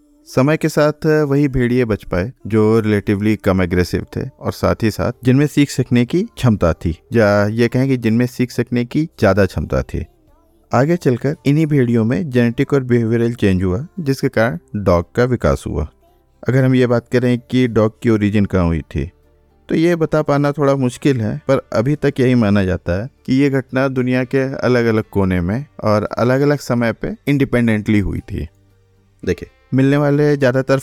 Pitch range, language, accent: 100-130 Hz, Hindi, native